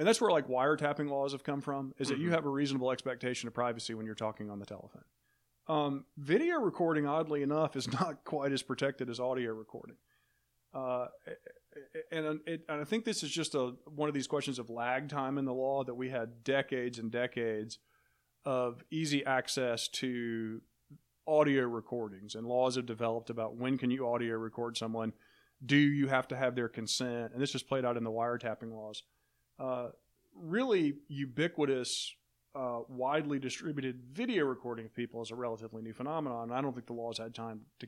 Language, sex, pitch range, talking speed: English, male, 120-145 Hz, 190 wpm